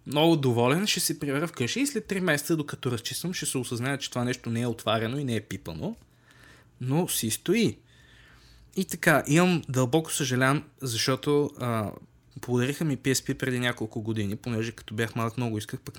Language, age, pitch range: Bulgarian, 20-39, 115-145 Hz